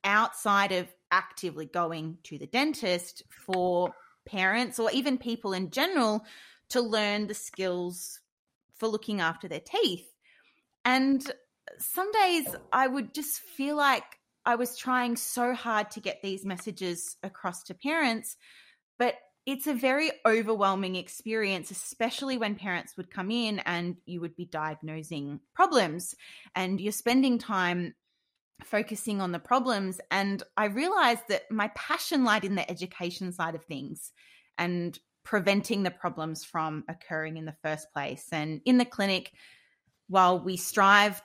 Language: English